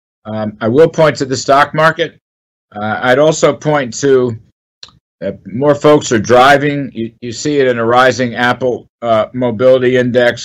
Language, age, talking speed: English, 50-69, 165 wpm